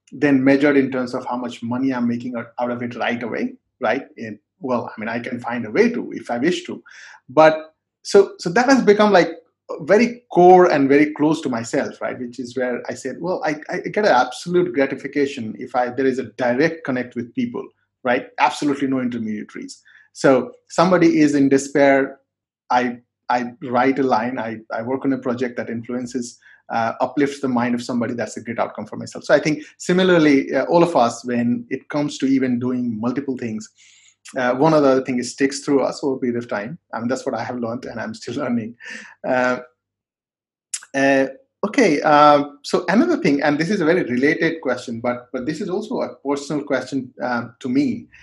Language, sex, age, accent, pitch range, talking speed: English, male, 30-49, Indian, 125-155 Hz, 205 wpm